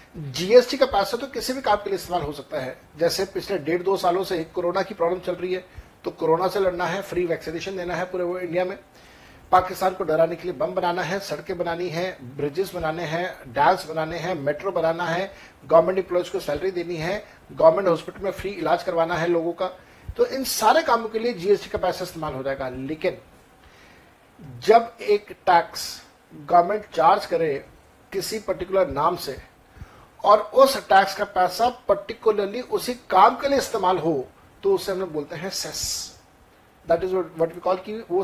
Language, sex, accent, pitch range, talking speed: Hindi, male, native, 175-215 Hz, 190 wpm